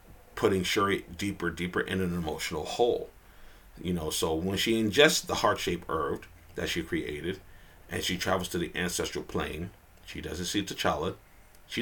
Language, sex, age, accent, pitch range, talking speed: English, male, 40-59, American, 85-105 Hz, 160 wpm